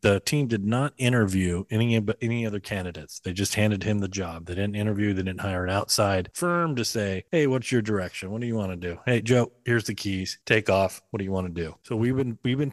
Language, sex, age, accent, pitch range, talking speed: English, male, 40-59, American, 95-120 Hz, 255 wpm